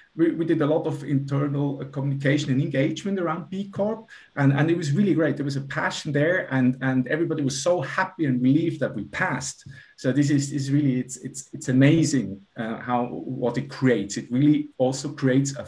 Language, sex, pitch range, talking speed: English, male, 125-160 Hz, 210 wpm